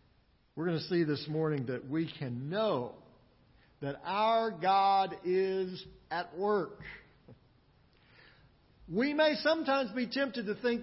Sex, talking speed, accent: male, 125 wpm, American